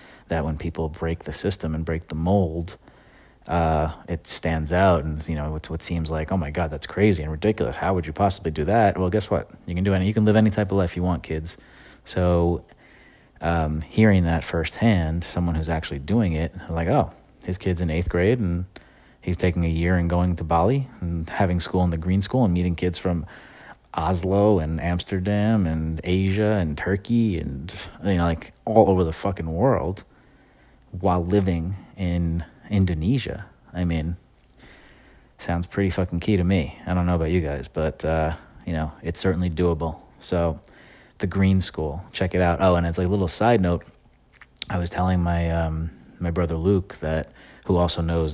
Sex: male